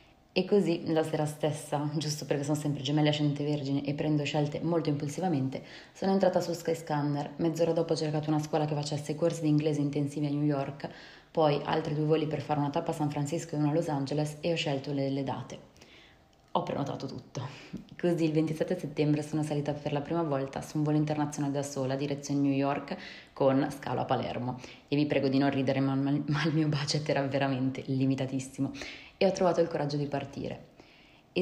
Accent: native